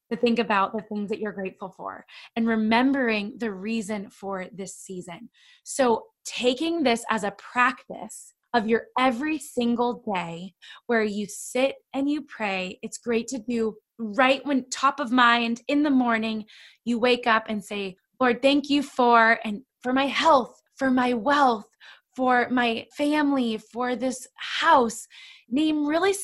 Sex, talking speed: female, 160 wpm